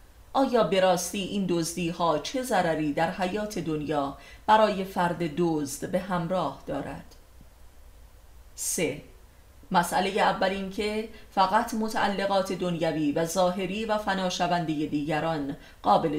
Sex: female